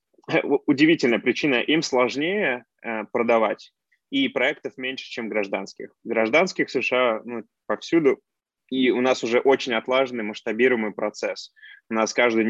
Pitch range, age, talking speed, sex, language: 110-130 Hz, 20-39, 130 wpm, male, Russian